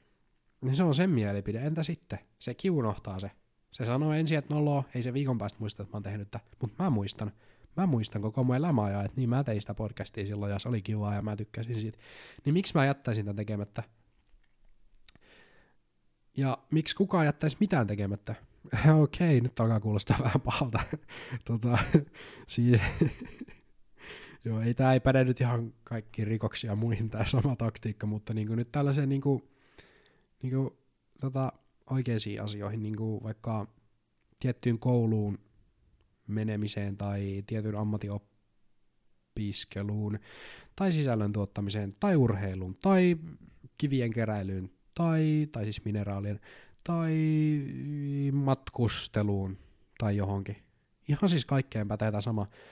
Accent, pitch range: native, 105-135 Hz